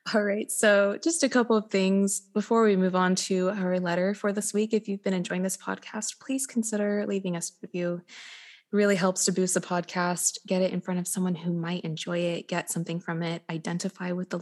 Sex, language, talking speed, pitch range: female, English, 225 wpm, 180-220 Hz